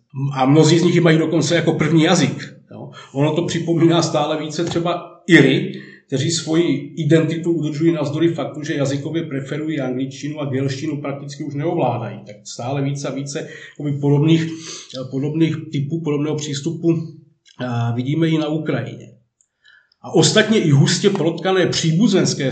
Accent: native